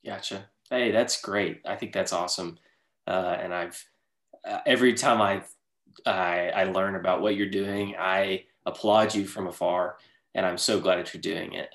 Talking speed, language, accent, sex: 180 wpm, English, American, male